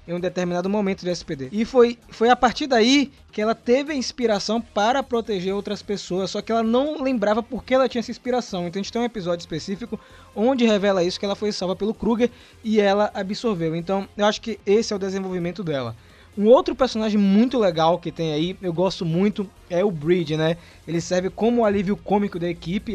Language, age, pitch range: Portuguese, 20-39, 170-220 Hz